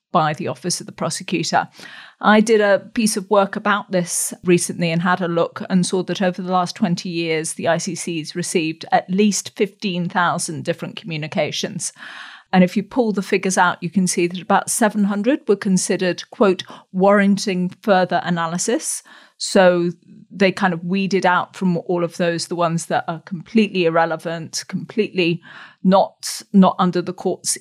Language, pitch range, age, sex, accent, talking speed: English, 175-200 Hz, 40-59, female, British, 165 wpm